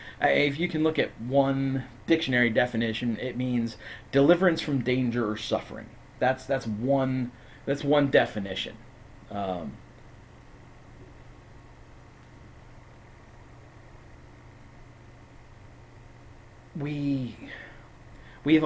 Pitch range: 110-130 Hz